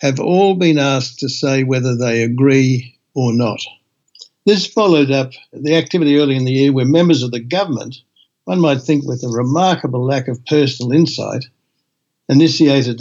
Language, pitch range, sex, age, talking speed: English, 125-160 Hz, male, 60-79, 165 wpm